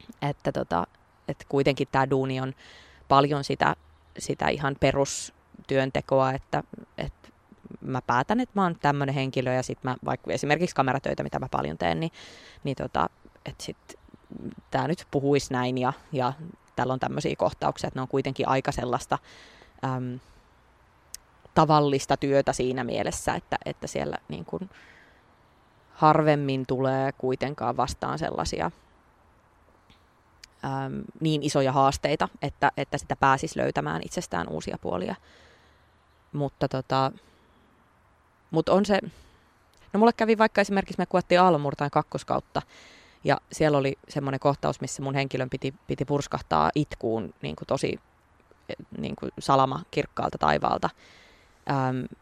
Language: English